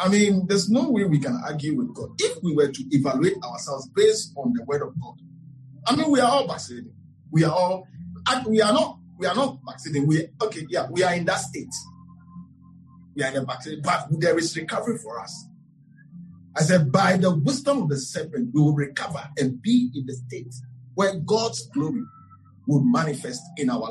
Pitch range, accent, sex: 145-195 Hz, Nigerian, male